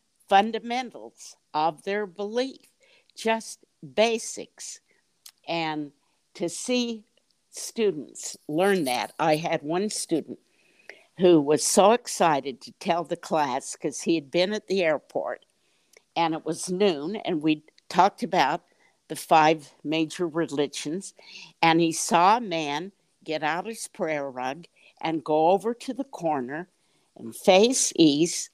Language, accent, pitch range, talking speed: English, American, 160-210 Hz, 130 wpm